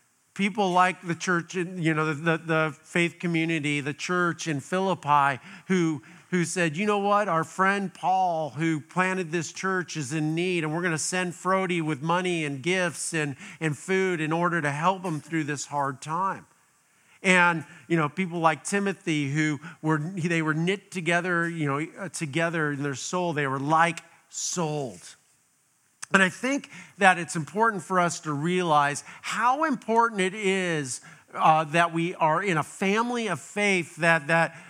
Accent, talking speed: American, 170 wpm